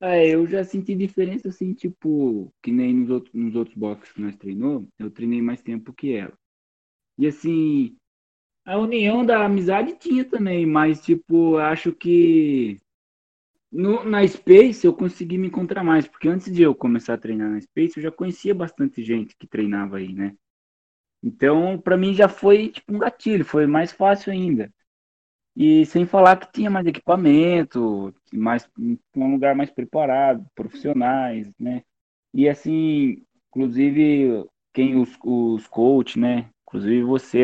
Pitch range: 120-185 Hz